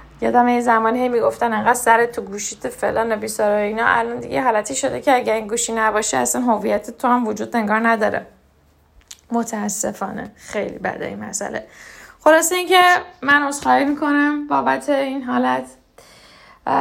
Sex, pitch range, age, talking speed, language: female, 220-290 Hz, 10-29, 160 wpm, Persian